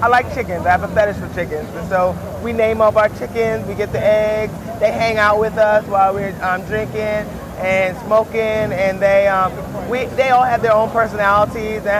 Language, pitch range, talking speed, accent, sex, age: English, 185-220 Hz, 210 wpm, American, male, 30-49